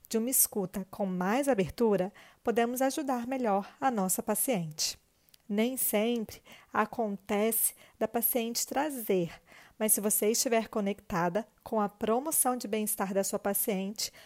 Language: Portuguese